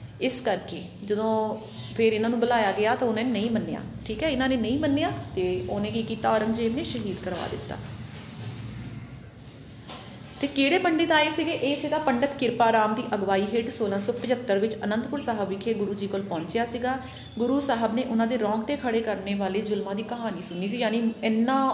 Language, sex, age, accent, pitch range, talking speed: Hindi, female, 30-49, native, 215-270 Hz, 165 wpm